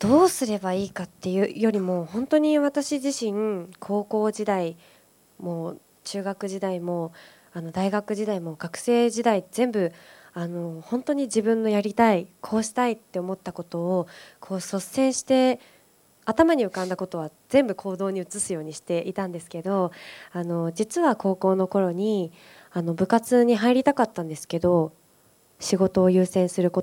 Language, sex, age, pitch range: Japanese, female, 20-39, 170-215 Hz